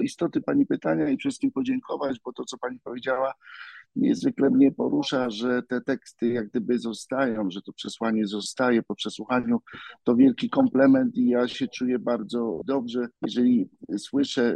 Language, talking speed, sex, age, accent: Polish, 155 wpm, male, 50-69, native